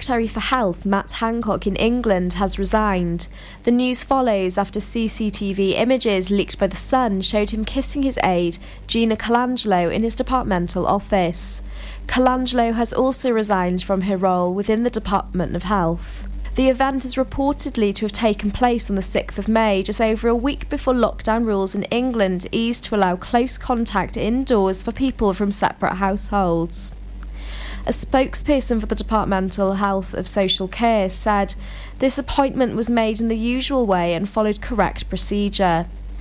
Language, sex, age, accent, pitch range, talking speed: English, female, 20-39, British, 195-240 Hz, 160 wpm